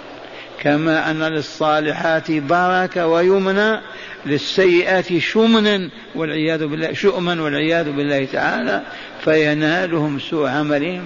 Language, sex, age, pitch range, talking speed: Arabic, male, 50-69, 155-185 Hz, 85 wpm